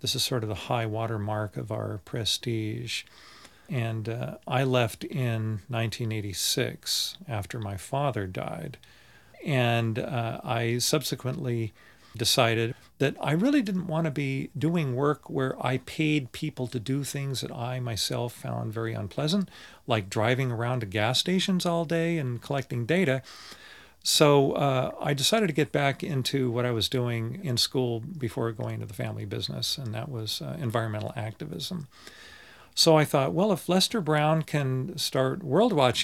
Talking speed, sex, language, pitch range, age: 160 wpm, male, English, 115-145 Hz, 40-59